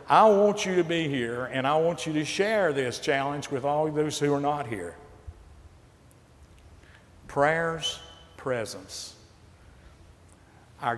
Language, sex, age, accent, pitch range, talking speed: English, male, 50-69, American, 110-150 Hz, 130 wpm